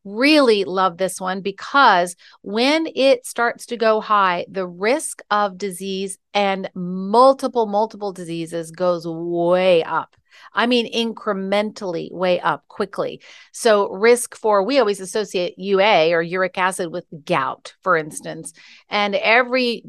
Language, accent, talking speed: English, American, 135 wpm